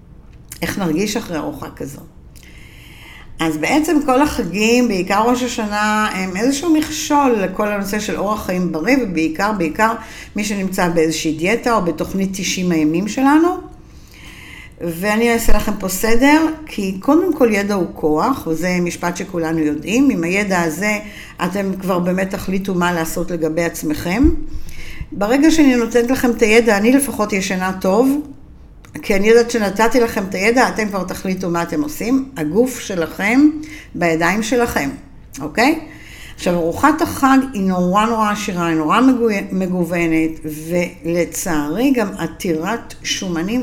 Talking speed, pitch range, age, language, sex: 140 wpm, 175-245 Hz, 60-79, Hebrew, female